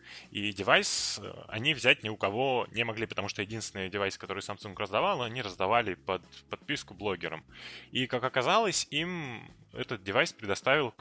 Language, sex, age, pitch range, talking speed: Russian, male, 20-39, 95-125 Hz, 155 wpm